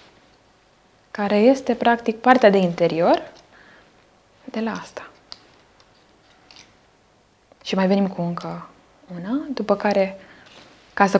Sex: female